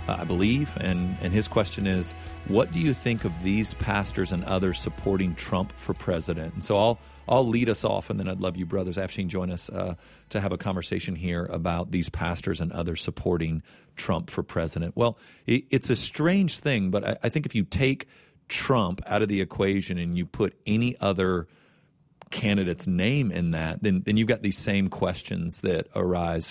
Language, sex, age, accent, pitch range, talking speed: English, male, 40-59, American, 90-110 Hz, 200 wpm